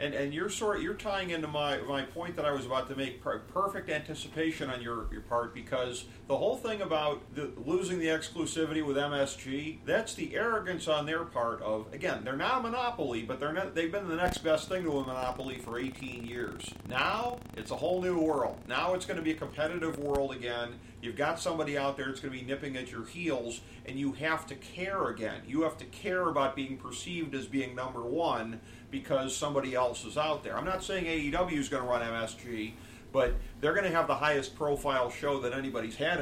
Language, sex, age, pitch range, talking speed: English, male, 40-59, 120-155 Hz, 220 wpm